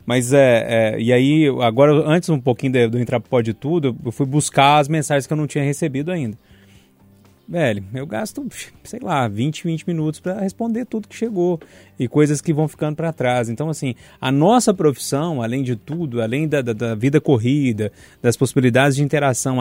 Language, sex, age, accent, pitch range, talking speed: Portuguese, male, 20-39, Brazilian, 125-165 Hz, 190 wpm